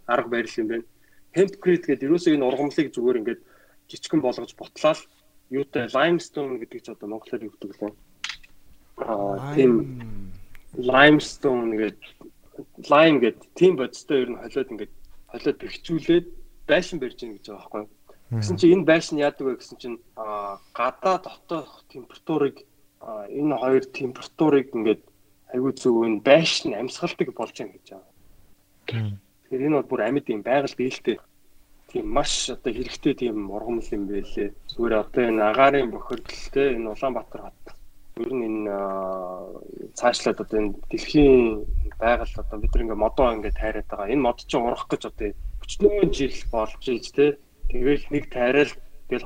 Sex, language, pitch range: male, Korean, 105-150 Hz